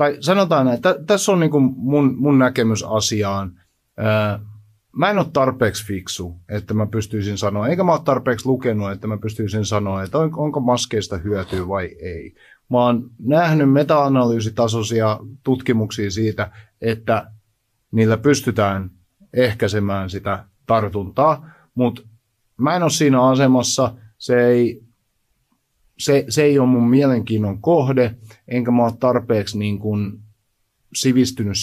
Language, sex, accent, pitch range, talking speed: Finnish, male, native, 105-130 Hz, 130 wpm